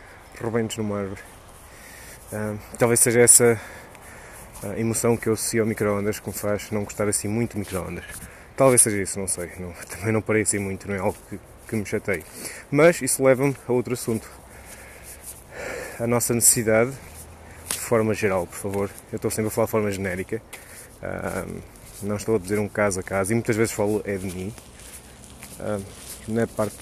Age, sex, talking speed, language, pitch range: 20-39, male, 170 wpm, Portuguese, 95-115 Hz